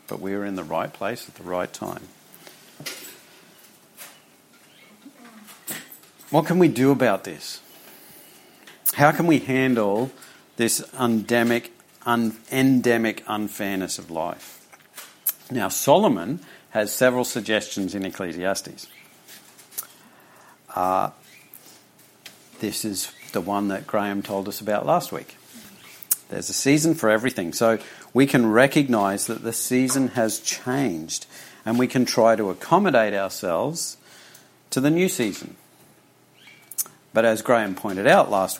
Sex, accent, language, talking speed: male, Australian, English, 120 wpm